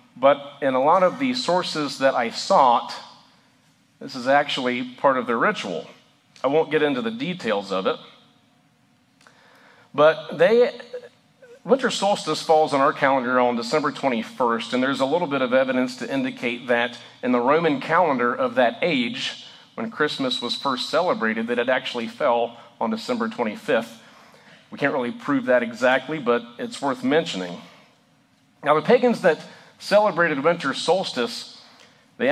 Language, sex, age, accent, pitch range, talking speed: English, male, 40-59, American, 130-220 Hz, 155 wpm